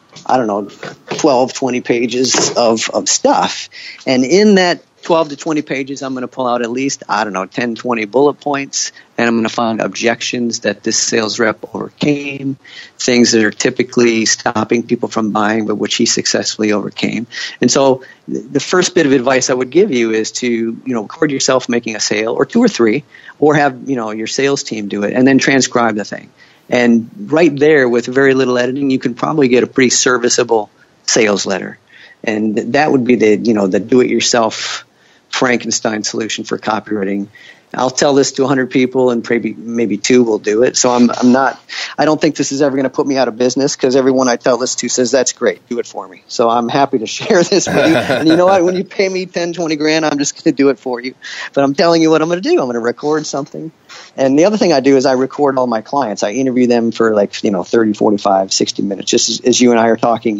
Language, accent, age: English, American, 50-69